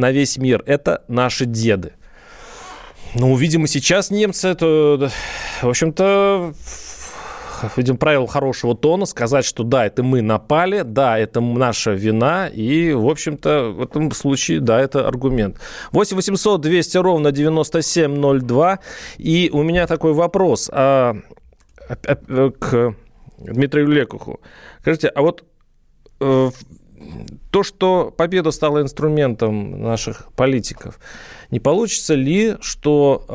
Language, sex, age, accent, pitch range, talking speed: Russian, male, 30-49, native, 120-155 Hz, 115 wpm